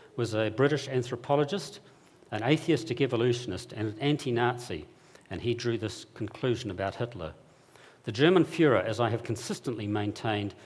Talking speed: 140 wpm